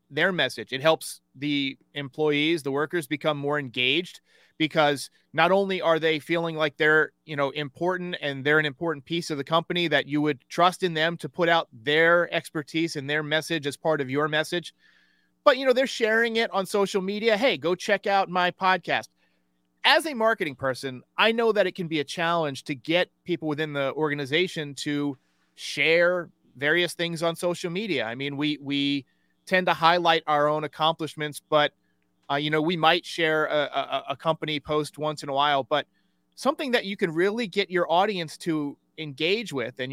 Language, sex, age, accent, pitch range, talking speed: English, male, 30-49, American, 145-180 Hz, 190 wpm